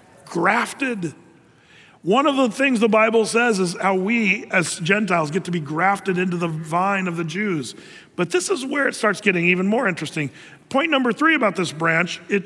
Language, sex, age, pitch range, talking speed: English, male, 50-69, 175-220 Hz, 195 wpm